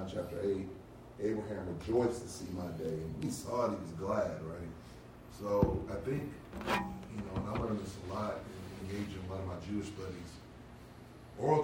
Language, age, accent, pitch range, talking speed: English, 30-49, American, 95-115 Hz, 185 wpm